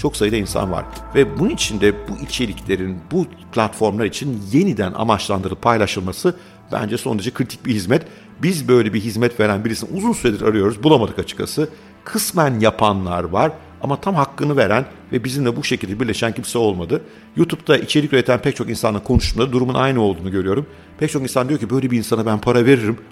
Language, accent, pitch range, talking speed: Turkish, native, 105-135 Hz, 175 wpm